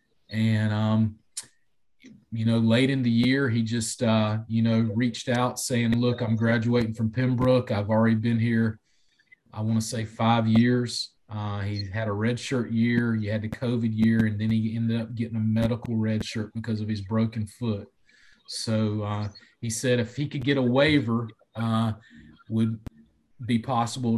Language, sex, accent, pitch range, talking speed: English, male, American, 110-120 Hz, 175 wpm